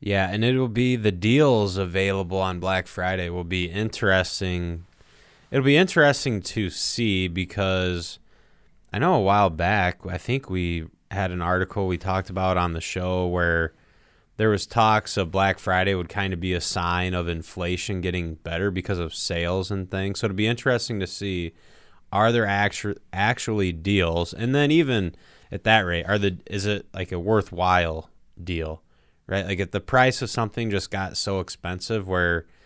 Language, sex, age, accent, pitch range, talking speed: English, male, 20-39, American, 90-105 Hz, 175 wpm